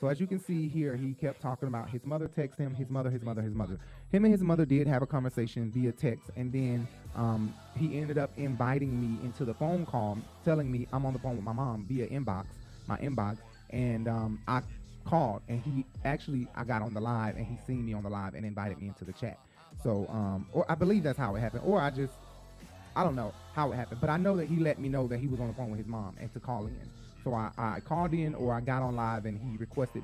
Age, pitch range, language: 30-49, 115-140 Hz, English